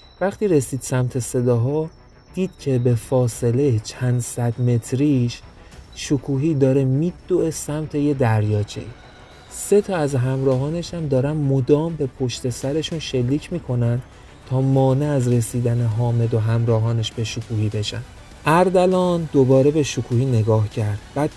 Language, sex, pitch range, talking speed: Persian, male, 115-150 Hz, 130 wpm